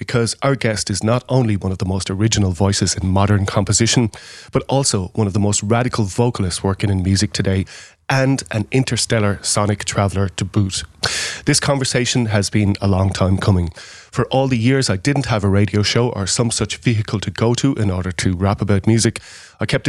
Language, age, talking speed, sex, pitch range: English, 30-49, 200 wpm, male, 100-120 Hz